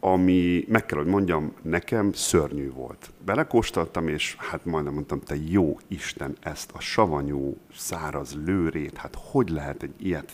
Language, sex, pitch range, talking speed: Hungarian, male, 75-95 Hz, 150 wpm